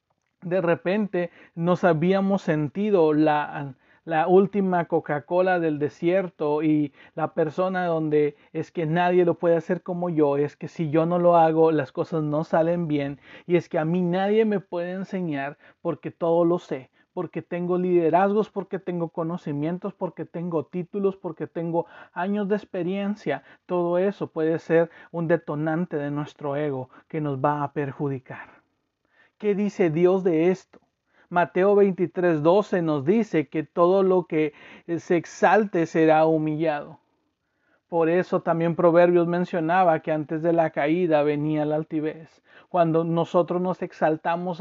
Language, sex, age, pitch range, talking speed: Spanish, male, 40-59, 155-180 Hz, 150 wpm